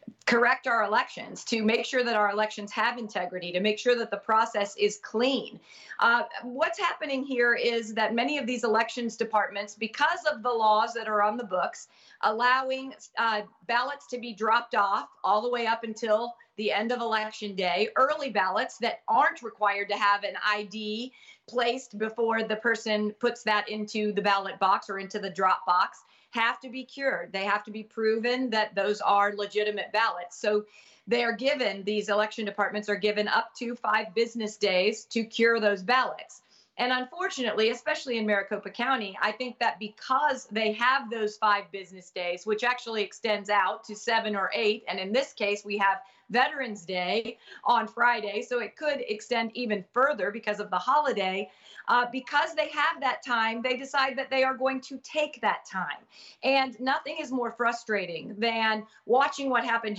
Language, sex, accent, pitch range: English, female, American, 210-245 Hz